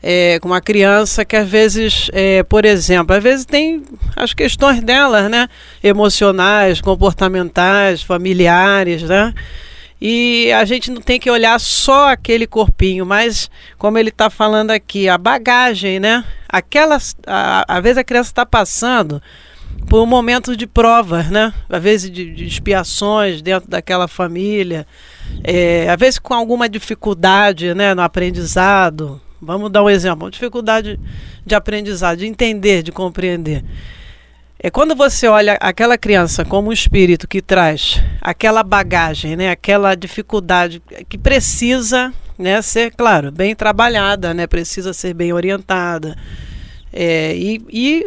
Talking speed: 140 wpm